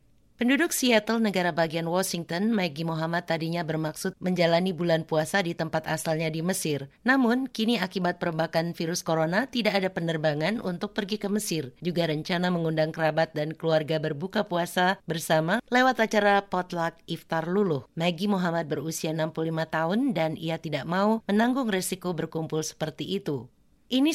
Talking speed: 145 wpm